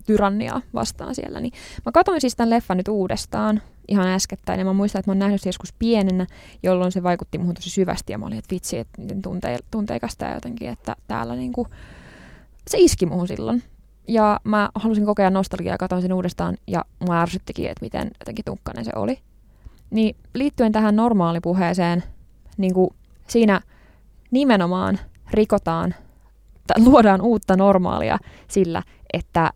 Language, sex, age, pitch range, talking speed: Finnish, female, 20-39, 175-210 Hz, 150 wpm